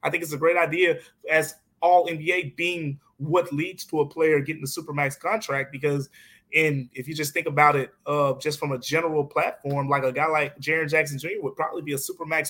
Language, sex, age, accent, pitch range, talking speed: English, male, 20-39, American, 145-170 Hz, 215 wpm